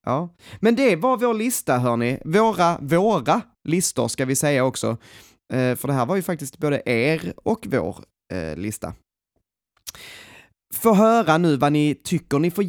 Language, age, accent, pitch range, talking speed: Swedish, 20-39, native, 120-170 Hz, 165 wpm